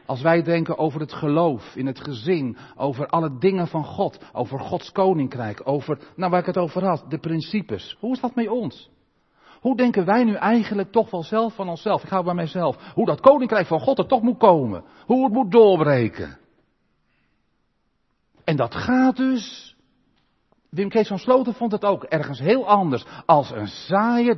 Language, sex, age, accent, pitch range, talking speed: Dutch, male, 50-69, Dutch, 130-200 Hz, 185 wpm